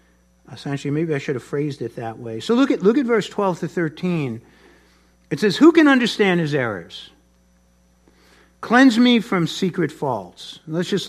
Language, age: English, 50-69